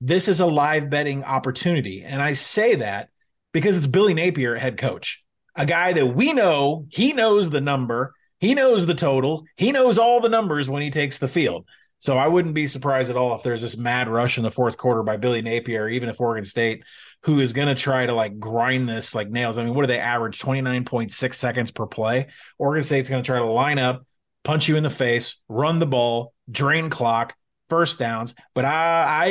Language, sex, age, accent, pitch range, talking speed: English, male, 30-49, American, 125-160 Hz, 215 wpm